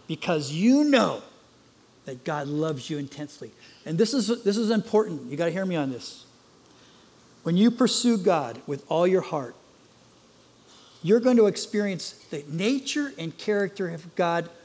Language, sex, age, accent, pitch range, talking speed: English, male, 50-69, American, 170-225 Hz, 160 wpm